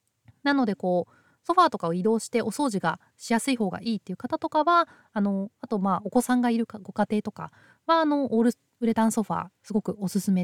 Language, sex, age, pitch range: Japanese, female, 20-39, 195-305 Hz